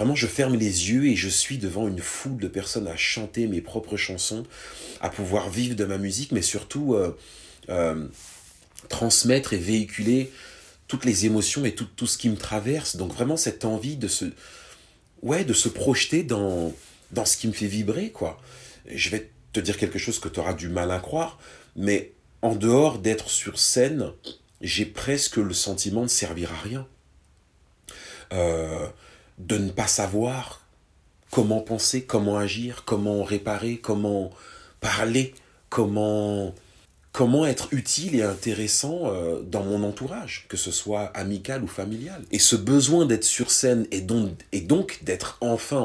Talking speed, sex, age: 165 wpm, male, 40-59